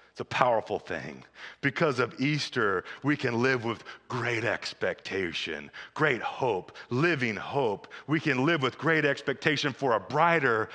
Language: English